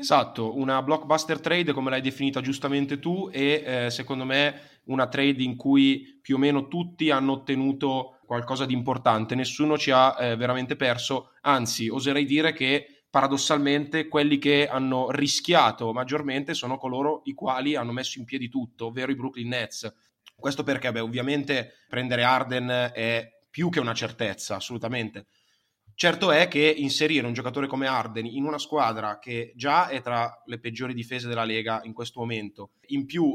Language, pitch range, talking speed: Italian, 115-140 Hz, 160 wpm